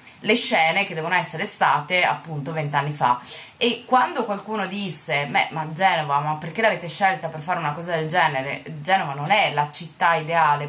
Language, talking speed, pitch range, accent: Italian, 180 wpm, 155-190 Hz, native